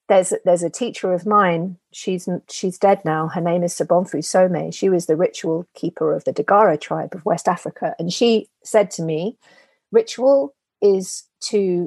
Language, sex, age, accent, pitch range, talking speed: English, female, 40-59, British, 175-220 Hz, 170 wpm